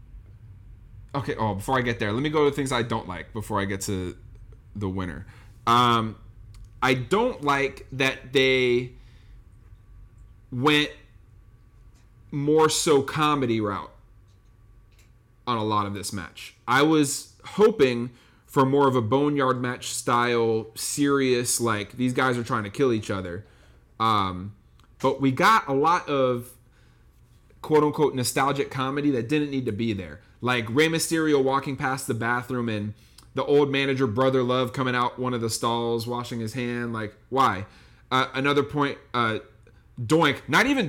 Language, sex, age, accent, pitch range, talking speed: English, male, 30-49, American, 110-145 Hz, 155 wpm